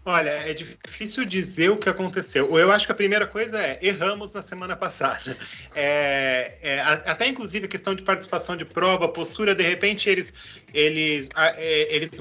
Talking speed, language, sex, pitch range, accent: 150 wpm, Portuguese, male, 155-225 Hz, Brazilian